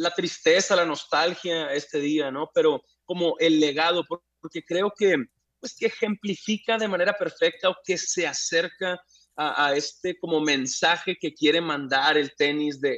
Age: 30-49